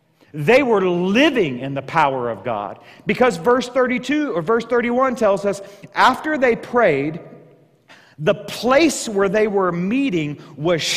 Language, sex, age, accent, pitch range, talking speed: English, male, 40-59, American, 180-250 Hz, 140 wpm